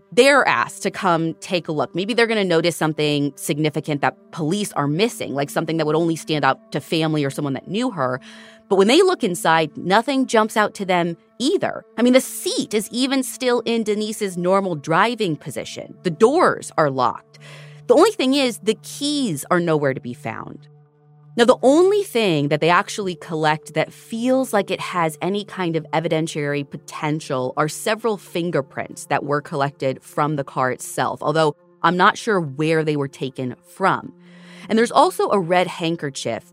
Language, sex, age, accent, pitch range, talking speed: English, female, 30-49, American, 155-230 Hz, 185 wpm